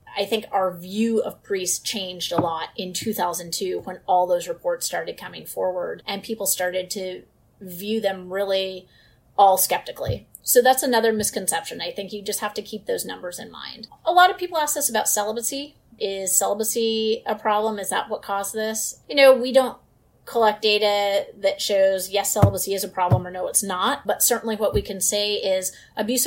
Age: 30-49